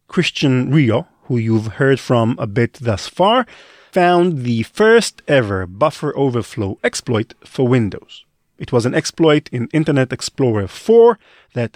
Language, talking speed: English, 145 wpm